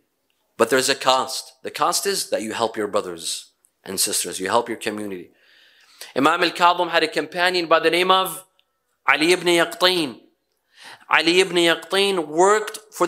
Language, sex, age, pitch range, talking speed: English, male, 30-49, 160-235 Hz, 160 wpm